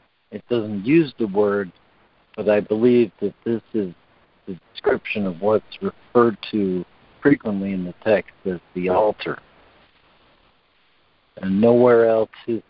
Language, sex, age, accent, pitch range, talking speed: English, male, 60-79, American, 95-115 Hz, 130 wpm